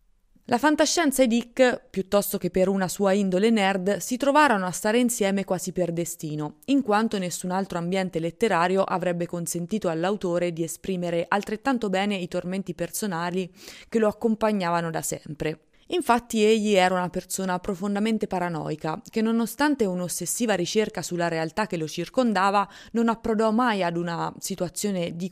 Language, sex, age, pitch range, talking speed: Italian, female, 20-39, 170-215 Hz, 150 wpm